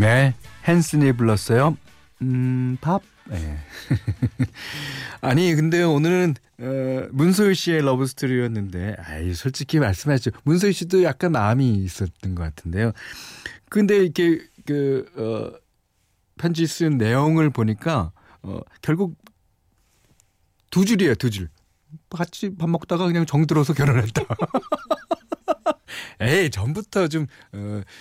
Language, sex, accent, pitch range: Korean, male, native, 100-160 Hz